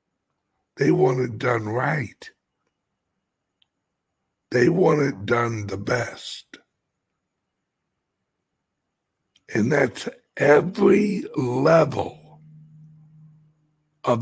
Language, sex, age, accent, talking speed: English, male, 60-79, American, 70 wpm